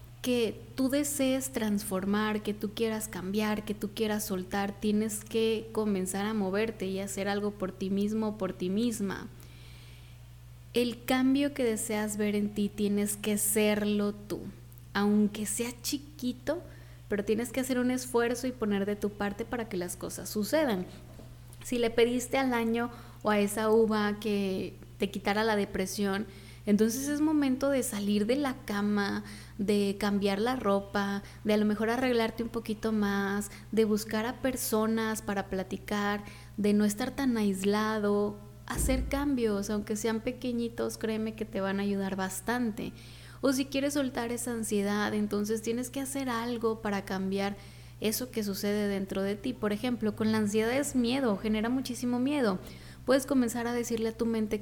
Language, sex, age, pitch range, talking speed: Spanish, female, 20-39, 200-235 Hz, 165 wpm